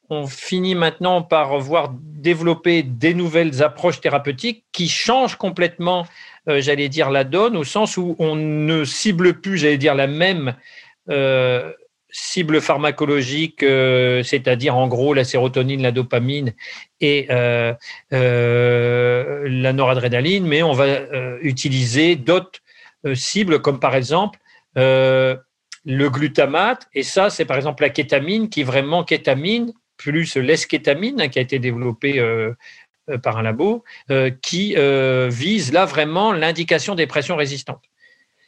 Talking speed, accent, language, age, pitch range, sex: 135 wpm, French, French, 50-69, 135-185 Hz, male